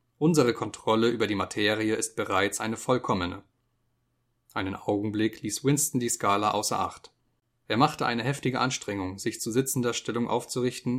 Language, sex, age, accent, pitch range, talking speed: German, male, 30-49, German, 110-125 Hz, 145 wpm